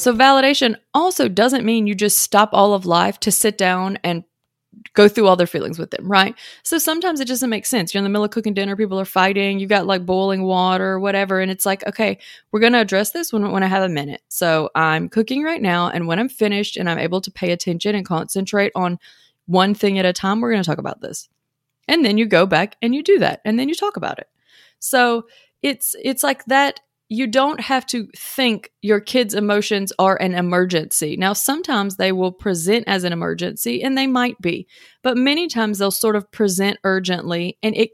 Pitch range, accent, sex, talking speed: 180-225 Hz, American, female, 225 wpm